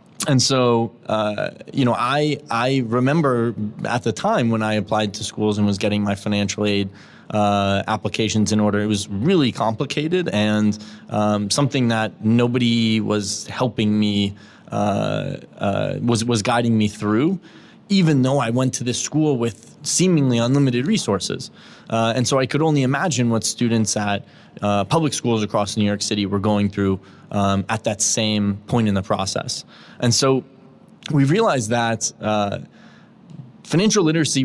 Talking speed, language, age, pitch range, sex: 160 wpm, English, 20-39, 105-130 Hz, male